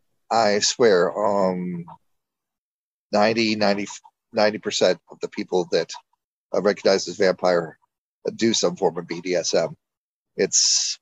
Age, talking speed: 40-59, 105 wpm